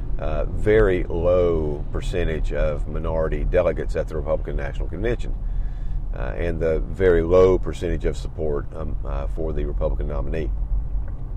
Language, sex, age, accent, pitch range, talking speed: English, male, 40-59, American, 80-95 Hz, 135 wpm